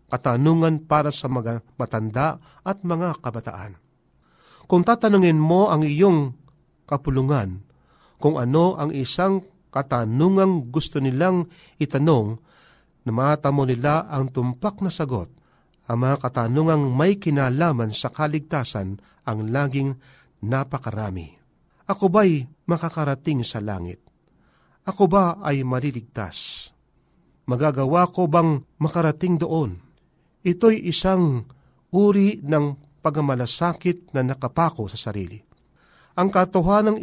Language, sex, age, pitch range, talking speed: Filipino, male, 40-59, 125-175 Hz, 100 wpm